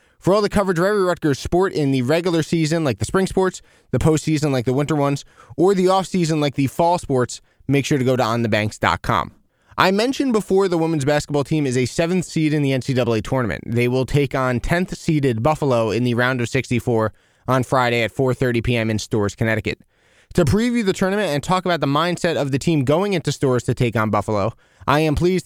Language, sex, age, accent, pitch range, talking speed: English, male, 20-39, American, 130-175 Hz, 220 wpm